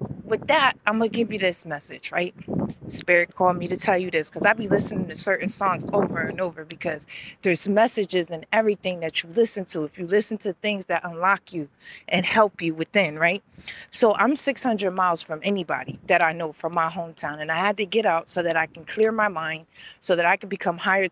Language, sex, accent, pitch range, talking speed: English, female, American, 170-210 Hz, 225 wpm